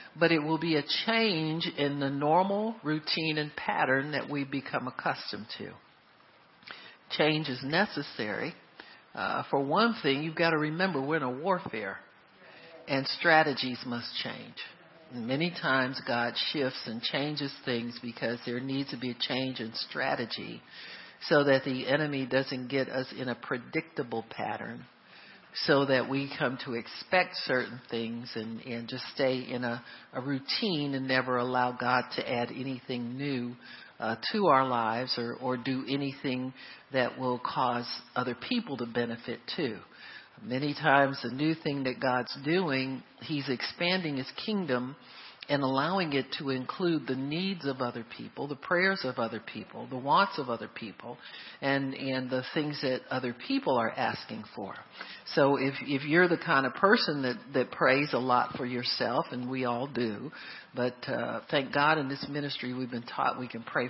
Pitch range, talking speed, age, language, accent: 125-145 Hz, 165 wpm, 60-79, English, American